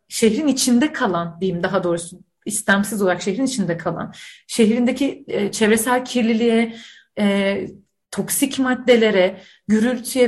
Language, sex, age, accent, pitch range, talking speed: Turkish, female, 30-49, native, 215-275 Hz, 110 wpm